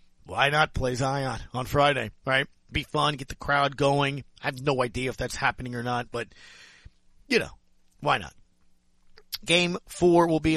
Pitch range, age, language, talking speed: 120-165 Hz, 40-59, English, 175 wpm